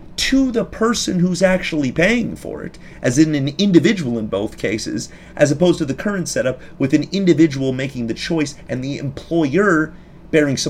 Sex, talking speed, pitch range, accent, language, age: male, 180 wpm, 135-185 Hz, American, English, 30-49